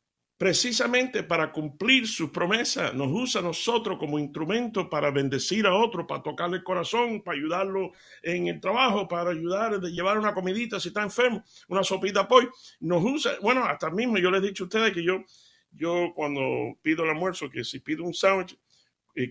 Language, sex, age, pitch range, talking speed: Spanish, male, 60-79, 150-200 Hz, 185 wpm